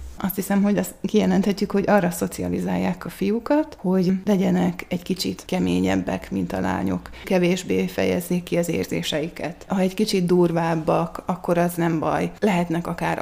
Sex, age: female, 30-49